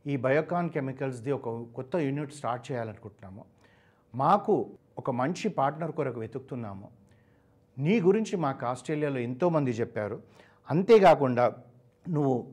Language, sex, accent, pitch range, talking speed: Telugu, male, native, 120-150 Hz, 105 wpm